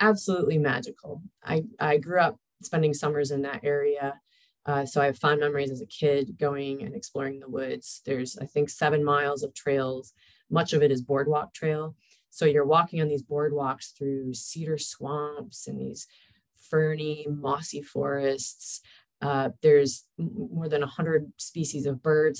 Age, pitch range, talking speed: 30-49, 140-155 Hz, 160 wpm